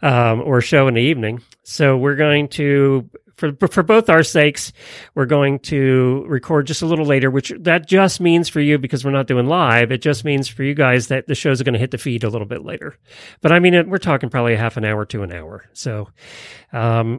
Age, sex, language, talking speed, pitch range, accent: 40-59, male, English, 235 wpm, 125-160 Hz, American